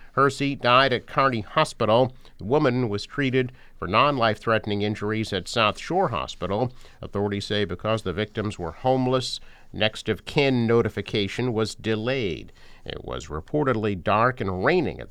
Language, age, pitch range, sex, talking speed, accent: English, 50-69, 105-130 Hz, male, 135 wpm, American